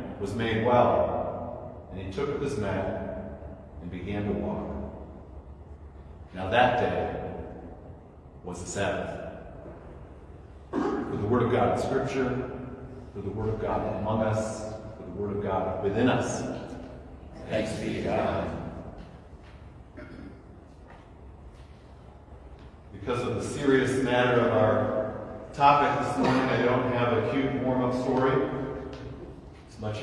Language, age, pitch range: English, 40-59, 95-140 Hz